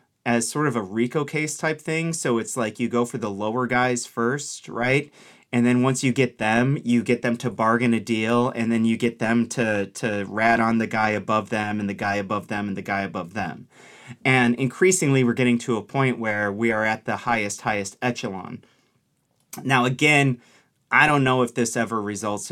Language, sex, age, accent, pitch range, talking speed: English, male, 30-49, American, 105-130 Hz, 210 wpm